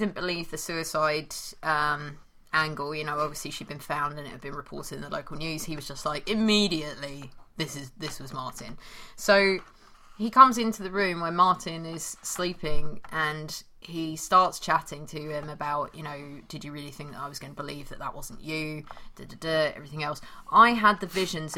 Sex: female